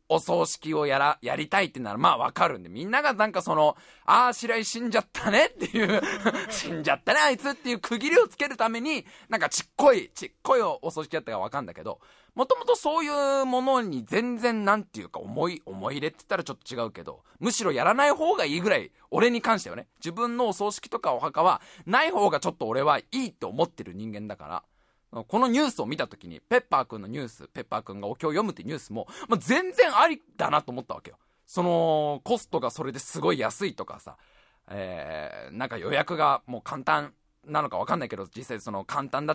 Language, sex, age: Japanese, male, 20-39